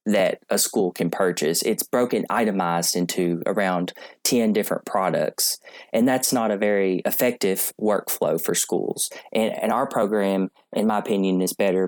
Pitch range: 90-105 Hz